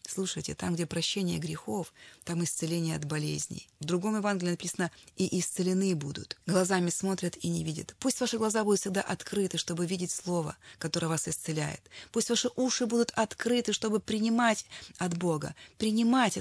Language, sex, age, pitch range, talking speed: Russian, female, 30-49, 175-280 Hz, 155 wpm